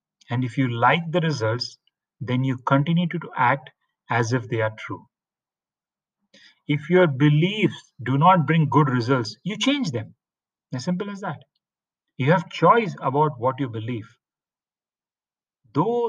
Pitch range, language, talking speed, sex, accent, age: 120-160 Hz, English, 150 wpm, male, Indian, 40-59